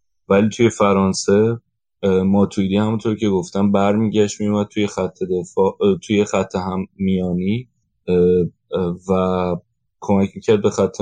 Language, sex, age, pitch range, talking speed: Persian, male, 20-39, 95-110 Hz, 120 wpm